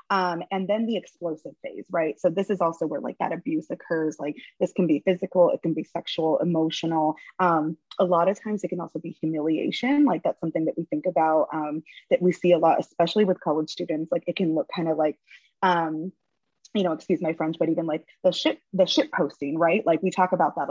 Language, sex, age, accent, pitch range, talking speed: English, female, 20-39, American, 165-210 Hz, 230 wpm